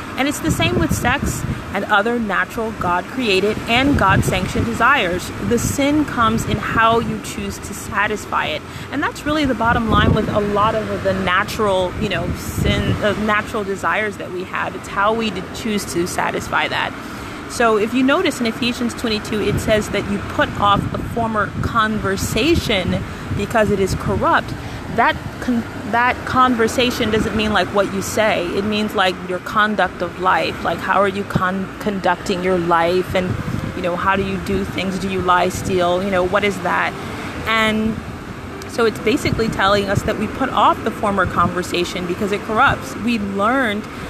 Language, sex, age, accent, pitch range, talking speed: English, female, 30-49, American, 190-225 Hz, 185 wpm